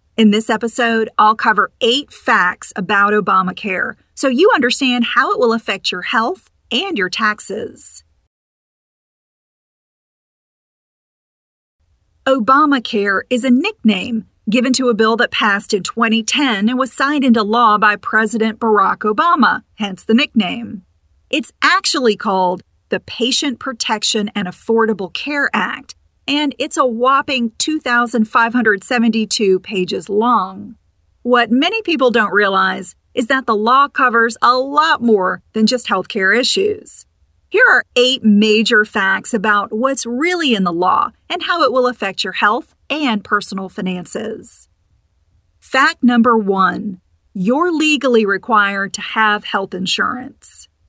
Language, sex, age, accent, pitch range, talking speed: English, female, 40-59, American, 200-255 Hz, 130 wpm